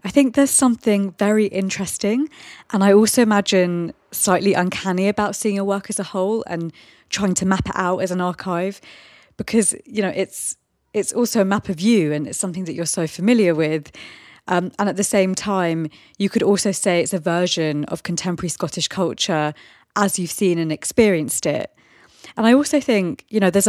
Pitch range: 170-205 Hz